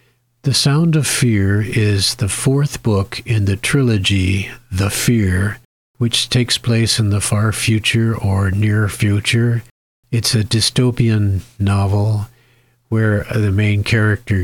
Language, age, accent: English, 50-69, American